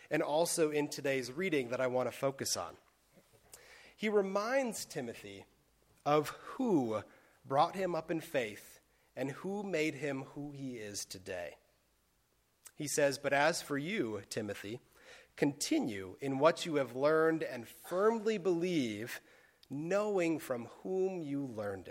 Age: 30-49